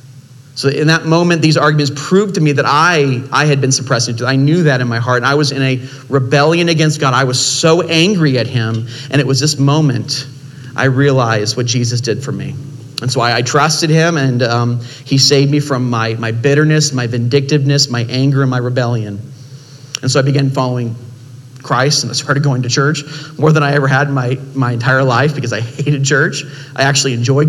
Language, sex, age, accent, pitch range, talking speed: English, male, 40-59, American, 130-150 Hz, 210 wpm